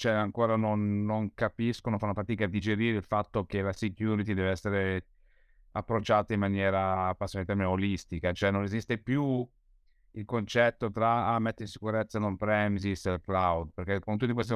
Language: Italian